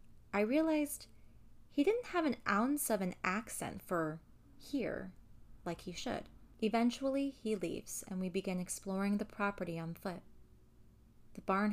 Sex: female